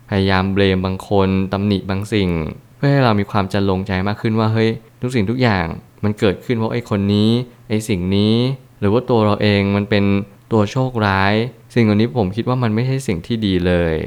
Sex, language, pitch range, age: male, Thai, 95-115 Hz, 20-39